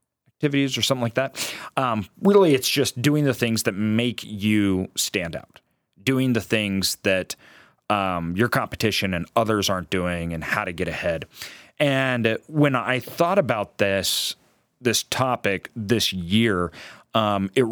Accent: American